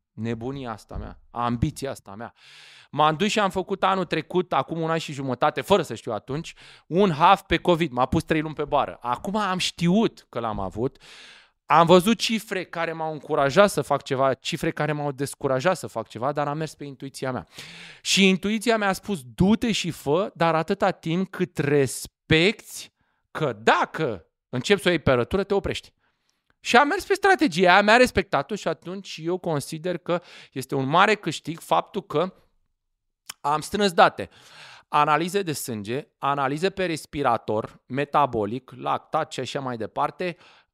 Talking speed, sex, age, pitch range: 170 wpm, male, 30-49, 135-180 Hz